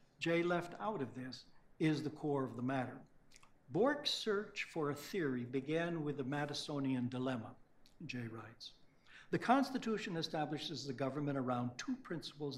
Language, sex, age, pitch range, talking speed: English, male, 60-79, 135-175 Hz, 150 wpm